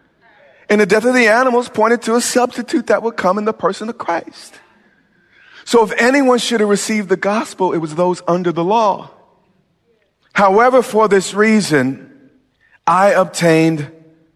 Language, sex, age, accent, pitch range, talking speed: English, male, 40-59, American, 130-185 Hz, 160 wpm